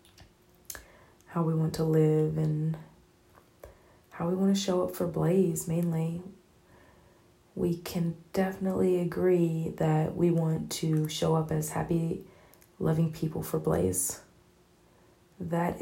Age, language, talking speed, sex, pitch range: 30-49, English, 120 wpm, female, 160-180 Hz